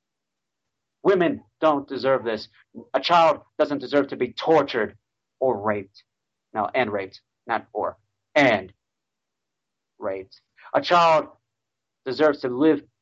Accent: American